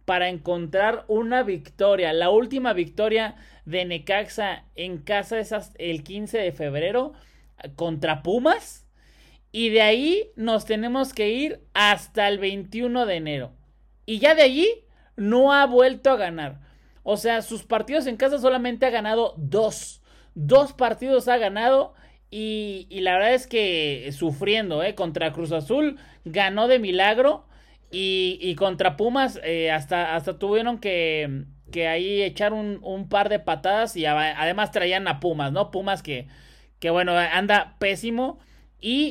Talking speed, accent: 150 wpm, Mexican